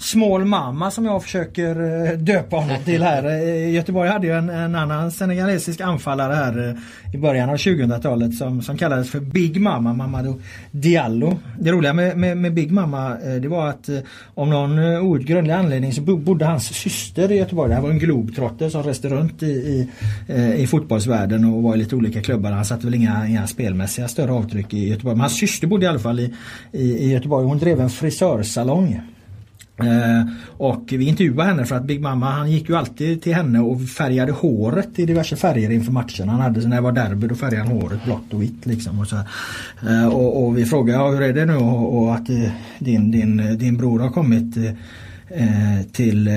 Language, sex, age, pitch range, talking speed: Swedish, male, 30-49, 115-160 Hz, 200 wpm